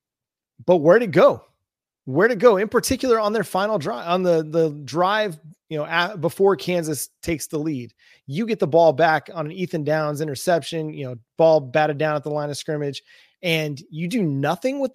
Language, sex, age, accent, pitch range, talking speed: English, male, 30-49, American, 160-225 Hz, 210 wpm